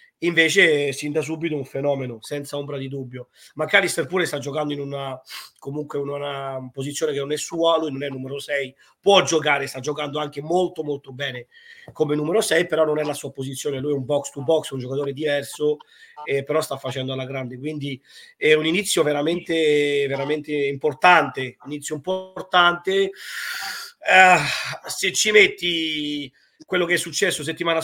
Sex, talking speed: male, 170 wpm